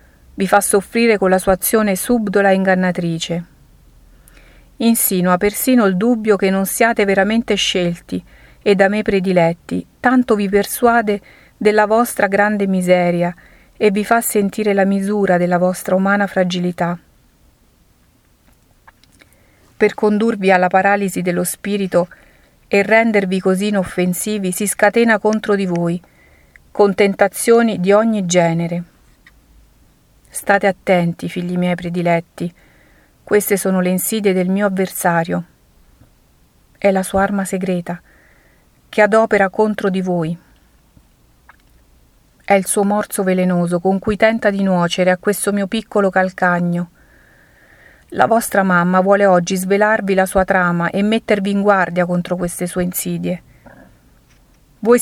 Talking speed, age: 125 wpm, 50-69